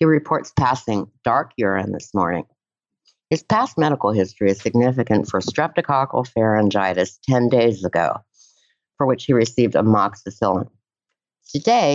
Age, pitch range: 50-69, 105-145 Hz